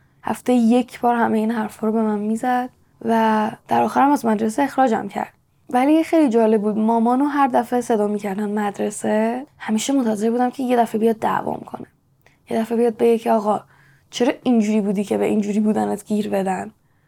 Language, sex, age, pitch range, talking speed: Persian, female, 10-29, 210-235 Hz, 185 wpm